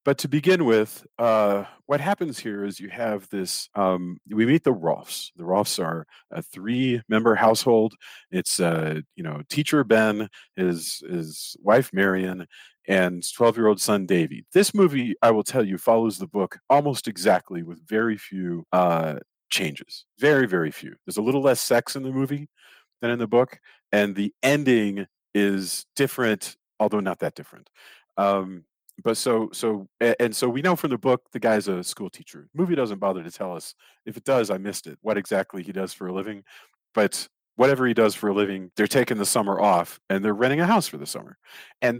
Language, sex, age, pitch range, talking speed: English, male, 40-59, 95-125 Hz, 190 wpm